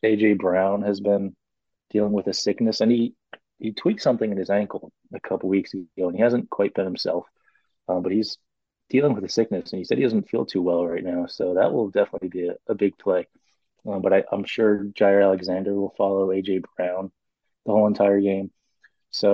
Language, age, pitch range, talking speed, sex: English, 30-49, 95-105 Hz, 210 wpm, male